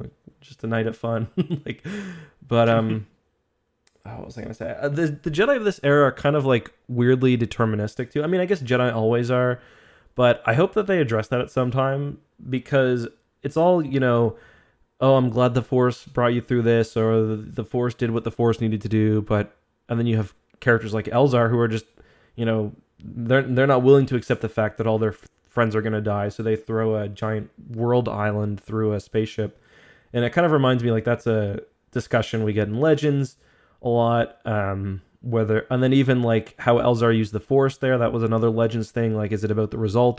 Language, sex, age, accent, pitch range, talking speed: English, male, 20-39, American, 110-125 Hz, 215 wpm